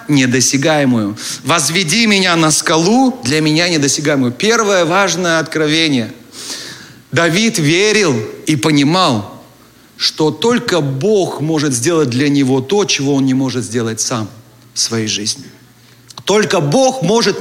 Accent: native